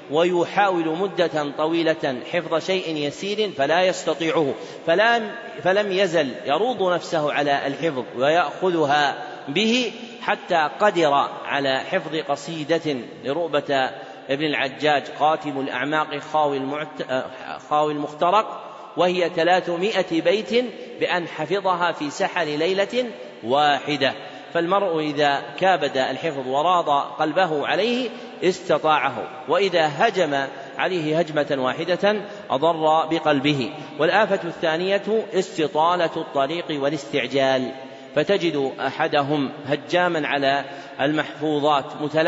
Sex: male